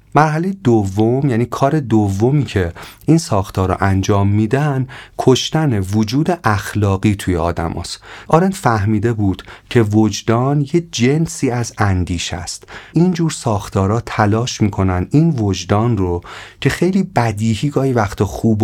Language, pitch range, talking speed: Persian, 95-130 Hz, 125 wpm